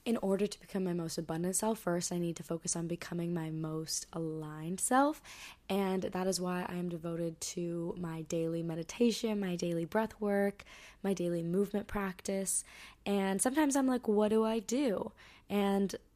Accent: American